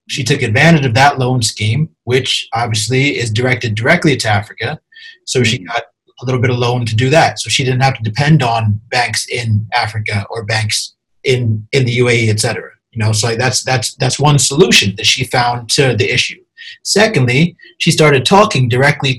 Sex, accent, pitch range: male, American, 120-155 Hz